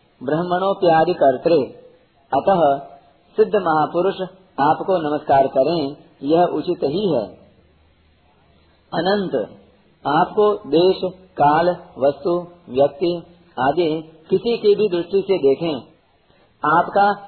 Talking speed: 95 wpm